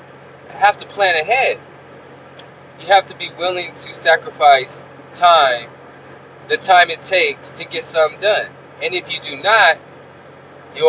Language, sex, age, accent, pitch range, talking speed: English, male, 20-39, American, 160-225 Hz, 145 wpm